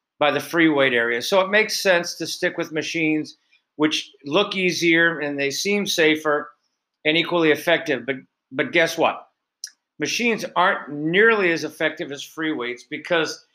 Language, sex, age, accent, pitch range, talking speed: English, male, 50-69, American, 145-175 Hz, 155 wpm